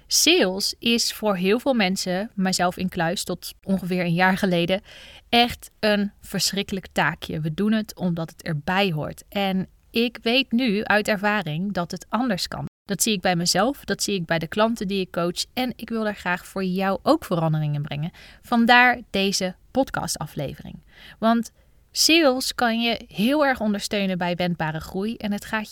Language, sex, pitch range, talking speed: Dutch, female, 175-220 Hz, 175 wpm